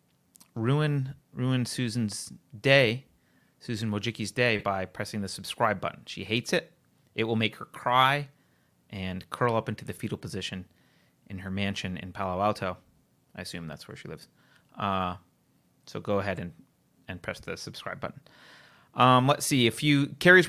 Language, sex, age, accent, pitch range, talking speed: English, male, 30-49, American, 100-135 Hz, 160 wpm